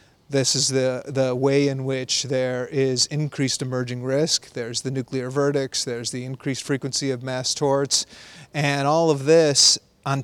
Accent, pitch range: American, 125-140 Hz